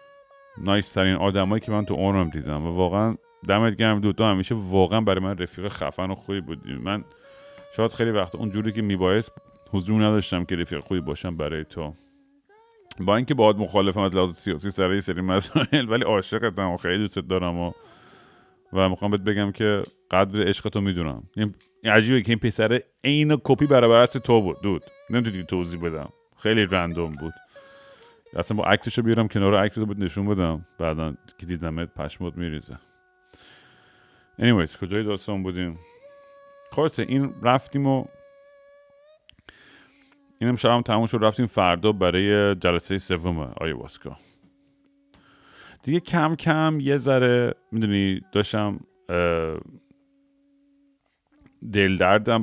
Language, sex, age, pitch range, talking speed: Persian, male, 30-49, 95-130 Hz, 145 wpm